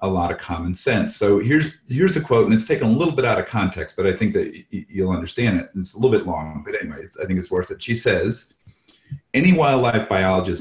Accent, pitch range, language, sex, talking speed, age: American, 90-110 Hz, English, male, 245 wpm, 40-59